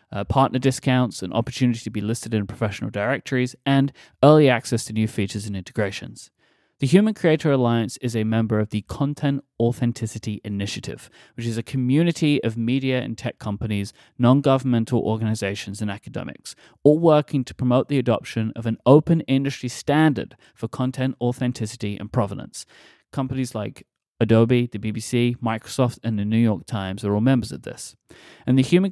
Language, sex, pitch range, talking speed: English, male, 110-140 Hz, 165 wpm